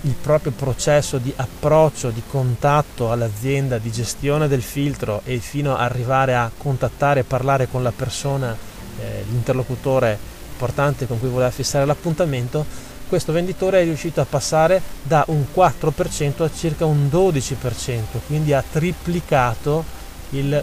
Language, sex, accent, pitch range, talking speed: Italian, male, native, 130-160 Hz, 140 wpm